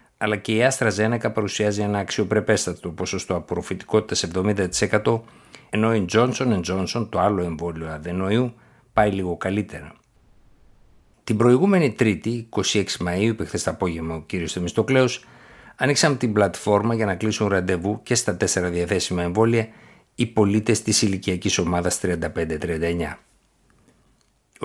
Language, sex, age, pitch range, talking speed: Greek, male, 60-79, 90-110 Hz, 125 wpm